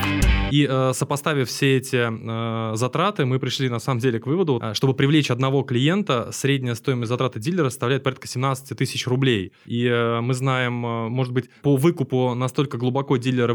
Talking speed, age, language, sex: 155 wpm, 20-39, Russian, male